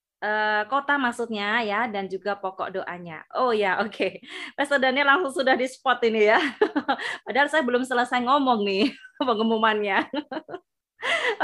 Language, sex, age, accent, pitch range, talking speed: Indonesian, female, 20-39, native, 215-265 Hz, 140 wpm